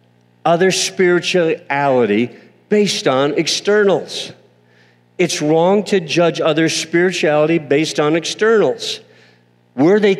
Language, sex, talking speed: English, male, 95 wpm